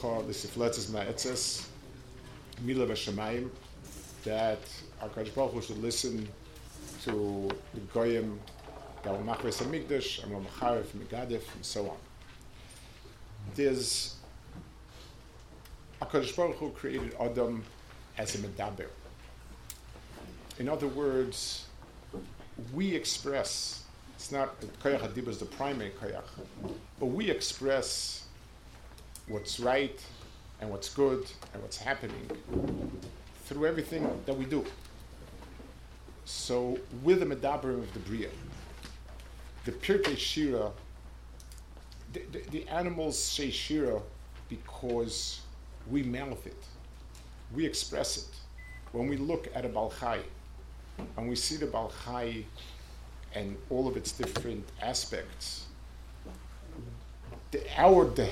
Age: 50-69